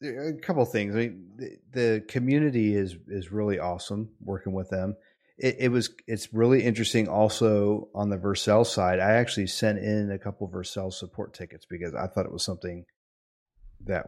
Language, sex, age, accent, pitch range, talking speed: English, male, 30-49, American, 90-110 Hz, 190 wpm